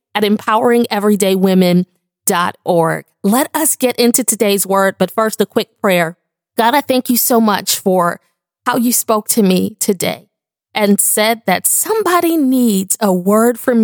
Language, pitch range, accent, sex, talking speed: English, 195-275 Hz, American, female, 145 wpm